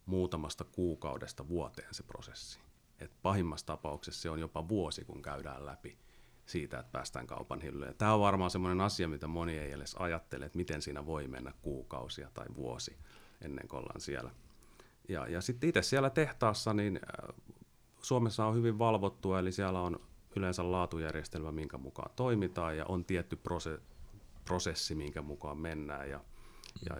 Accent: native